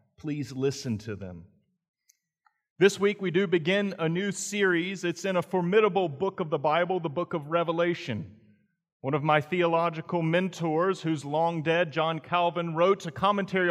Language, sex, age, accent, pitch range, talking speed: English, male, 40-59, American, 160-195 Hz, 160 wpm